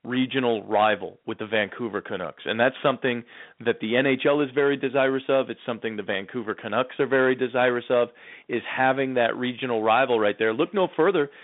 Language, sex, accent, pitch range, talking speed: English, male, American, 125-160 Hz, 185 wpm